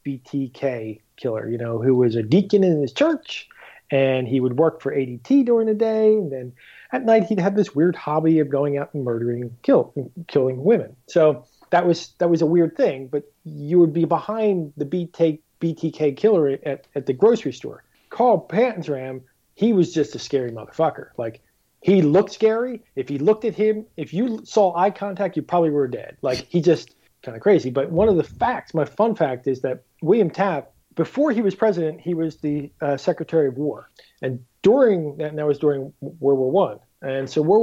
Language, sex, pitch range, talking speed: English, male, 135-180 Hz, 200 wpm